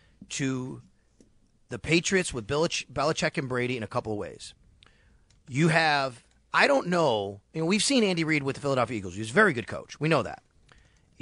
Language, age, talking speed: English, 30-49, 200 wpm